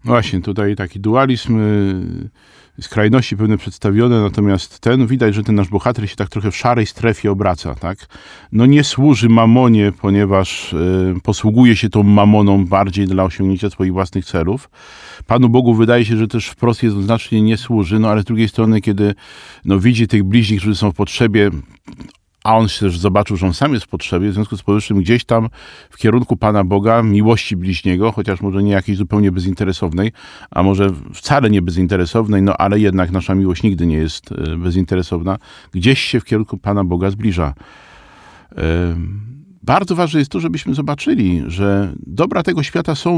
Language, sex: Polish, male